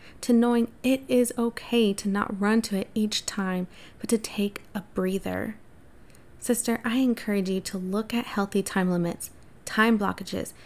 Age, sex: 20-39, female